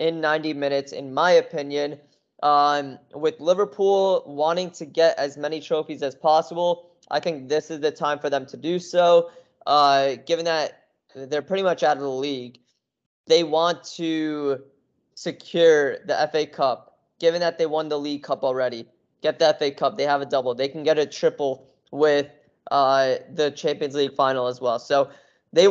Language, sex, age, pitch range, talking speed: English, male, 10-29, 145-170 Hz, 175 wpm